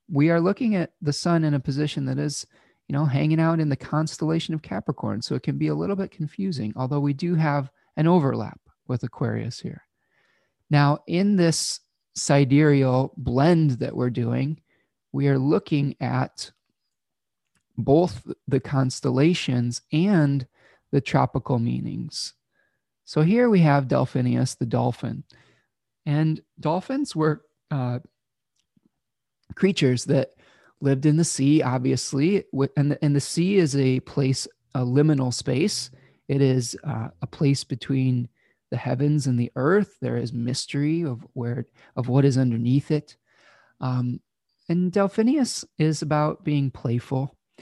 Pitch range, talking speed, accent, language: 130-155 Hz, 140 wpm, American, English